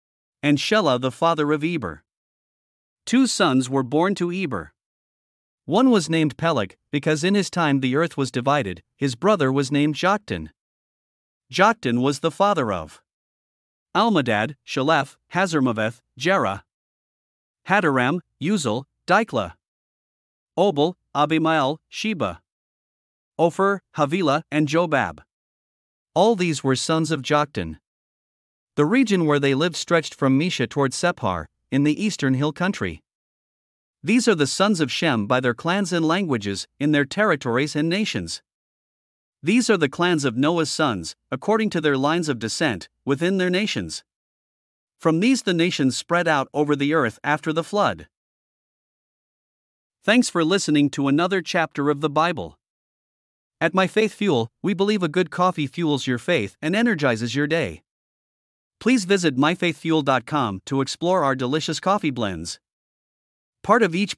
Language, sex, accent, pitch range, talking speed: English, male, American, 135-180 Hz, 140 wpm